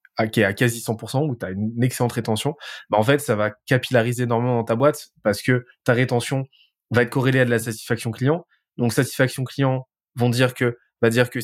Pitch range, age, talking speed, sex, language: 115-135 Hz, 20-39, 220 wpm, male, French